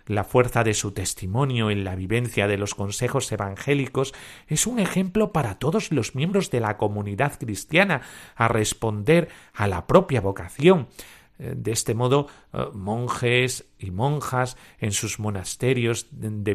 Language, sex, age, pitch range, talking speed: Spanish, male, 40-59, 100-145 Hz, 140 wpm